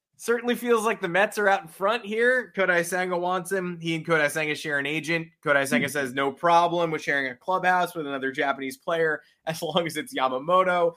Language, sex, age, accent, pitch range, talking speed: English, male, 20-39, American, 135-195 Hz, 215 wpm